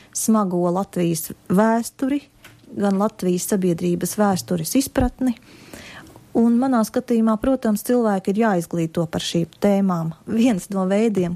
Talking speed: 110 wpm